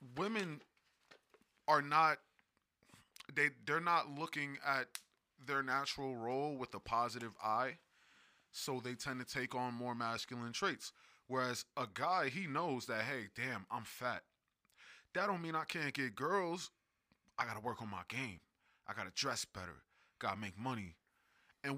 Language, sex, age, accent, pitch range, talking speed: English, male, 20-39, American, 115-150 Hz, 165 wpm